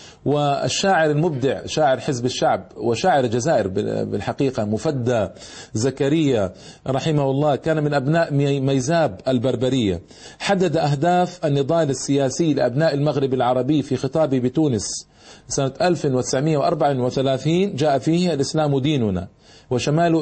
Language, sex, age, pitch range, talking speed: Arabic, male, 40-59, 125-155 Hz, 100 wpm